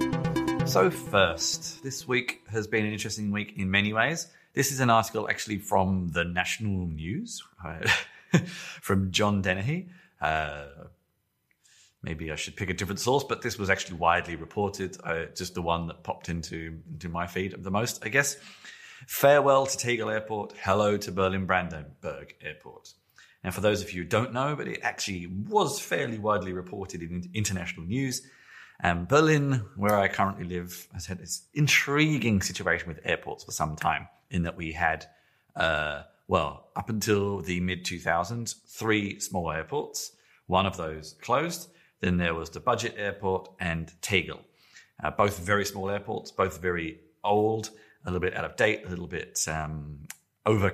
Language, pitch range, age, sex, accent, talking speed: English, 85-110 Hz, 30-49, male, British, 165 wpm